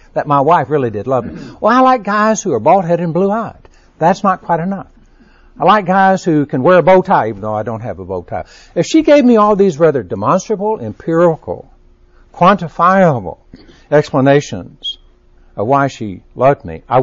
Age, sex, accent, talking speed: 60-79, male, American, 190 wpm